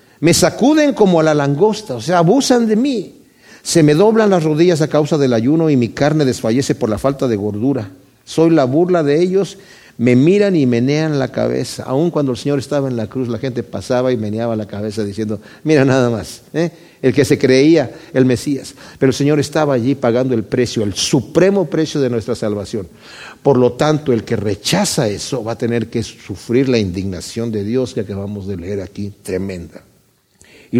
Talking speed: 200 wpm